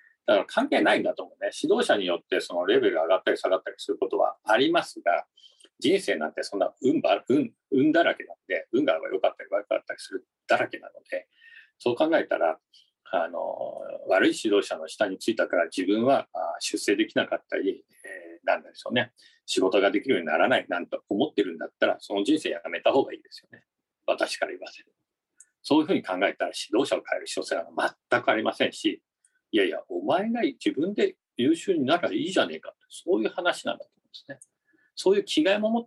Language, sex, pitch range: Japanese, male, 320-385 Hz